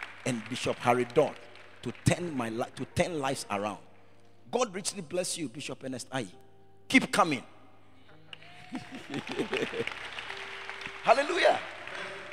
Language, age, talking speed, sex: English, 50-69, 100 wpm, male